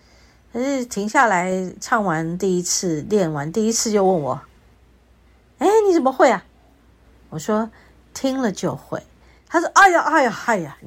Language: Chinese